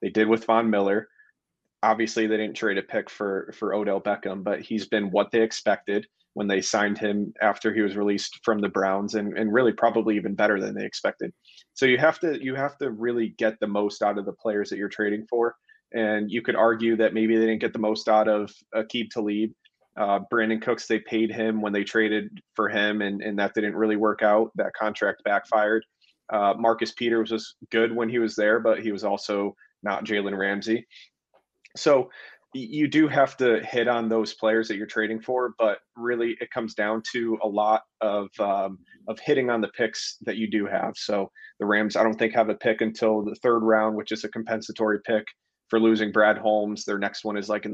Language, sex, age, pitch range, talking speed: English, male, 30-49, 105-115 Hz, 215 wpm